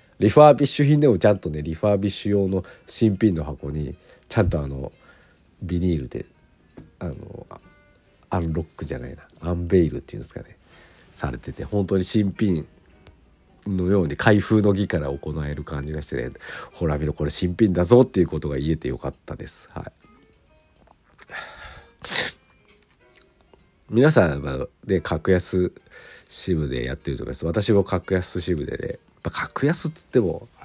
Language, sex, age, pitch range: Japanese, male, 50-69, 75-105 Hz